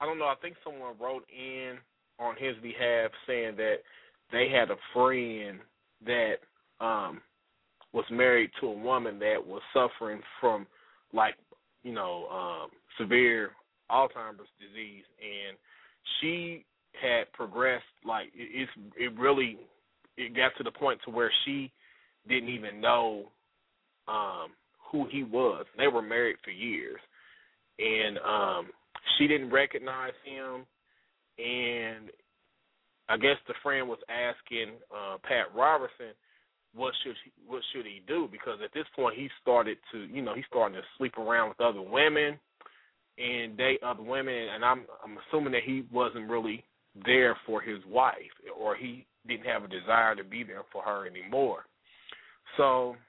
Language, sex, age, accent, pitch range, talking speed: English, male, 20-39, American, 120-150 Hz, 150 wpm